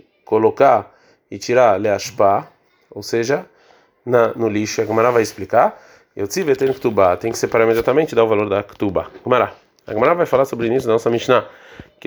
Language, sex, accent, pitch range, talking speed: Portuguese, male, Brazilian, 115-160 Hz, 195 wpm